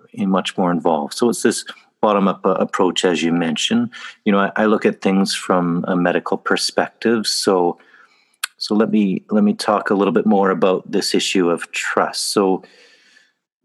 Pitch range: 85-105 Hz